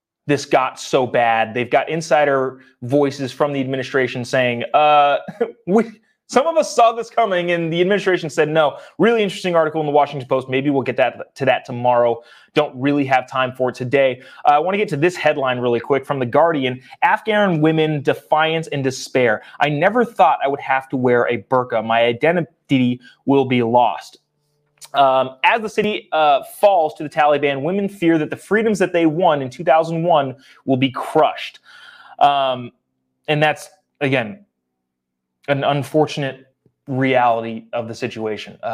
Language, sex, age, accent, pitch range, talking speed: English, male, 30-49, American, 125-165 Hz, 170 wpm